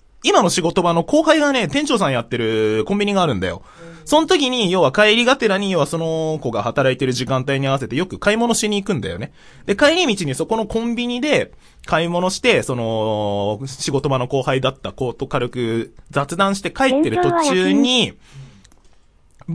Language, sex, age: Japanese, male, 20-39